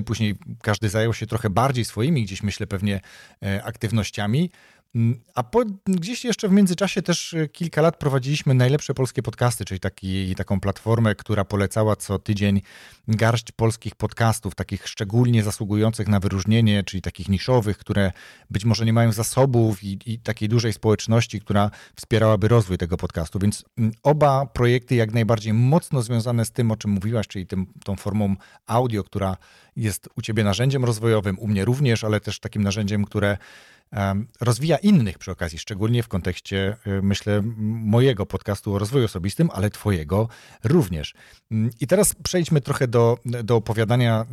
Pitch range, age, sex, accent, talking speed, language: 100-120 Hz, 40-59, male, native, 155 wpm, Polish